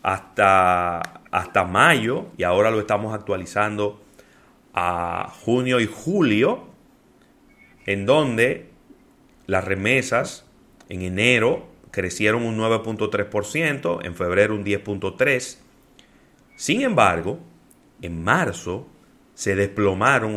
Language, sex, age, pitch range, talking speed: Spanish, male, 30-49, 100-130 Hz, 90 wpm